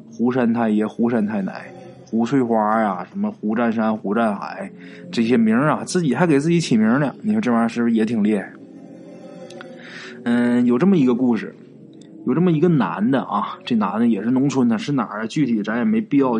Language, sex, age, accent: Chinese, male, 20-39, native